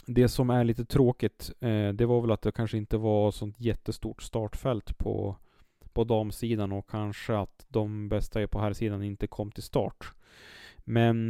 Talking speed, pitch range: 180 wpm, 105-130 Hz